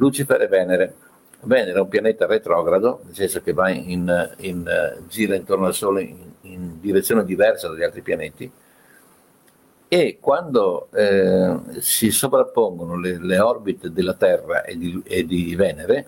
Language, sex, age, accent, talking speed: Italian, male, 60-79, native, 150 wpm